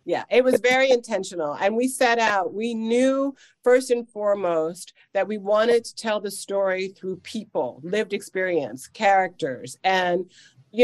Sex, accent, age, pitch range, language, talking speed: female, American, 40-59, 175-220 Hz, English, 155 wpm